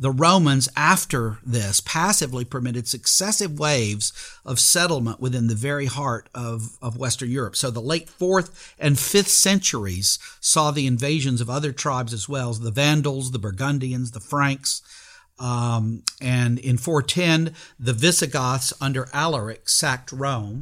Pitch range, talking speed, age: 120-150 Hz, 145 wpm, 50-69